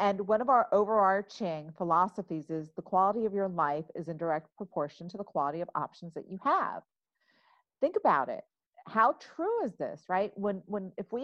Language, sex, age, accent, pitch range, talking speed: English, female, 40-59, American, 180-250 Hz, 190 wpm